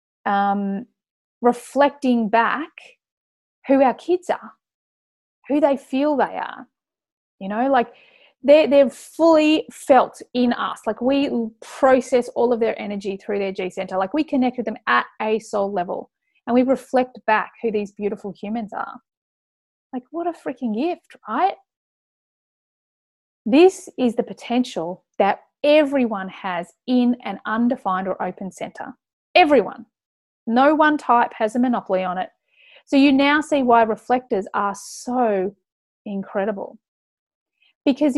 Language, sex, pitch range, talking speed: English, female, 200-270 Hz, 135 wpm